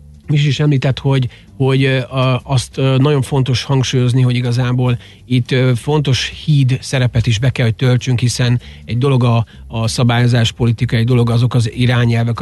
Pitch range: 110-125 Hz